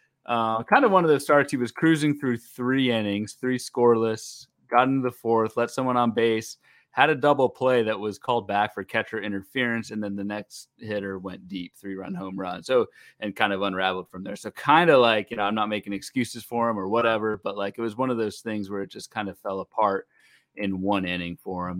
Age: 30-49